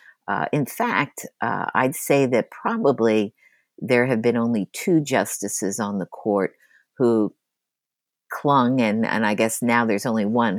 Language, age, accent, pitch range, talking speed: English, 50-69, American, 105-135 Hz, 155 wpm